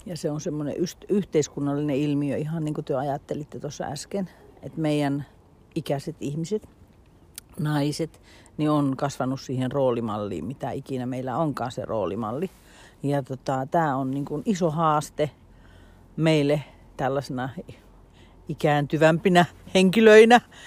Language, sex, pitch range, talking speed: Finnish, female, 135-155 Hz, 120 wpm